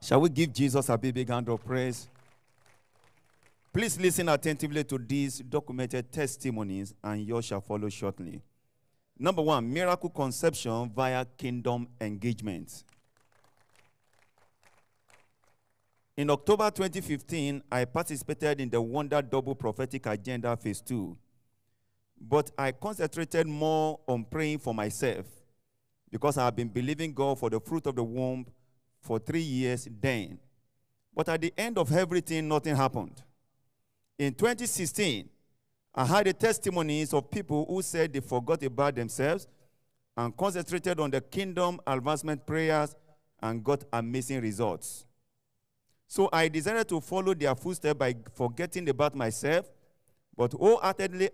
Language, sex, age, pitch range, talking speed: English, male, 50-69, 120-155 Hz, 130 wpm